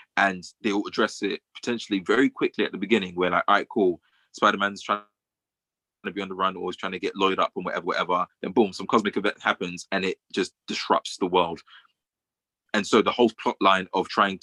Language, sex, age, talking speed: English, male, 20-39, 220 wpm